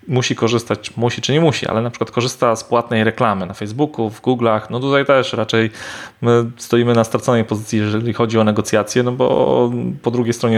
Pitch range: 105-120 Hz